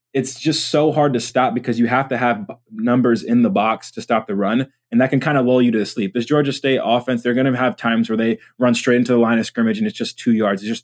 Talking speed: 295 wpm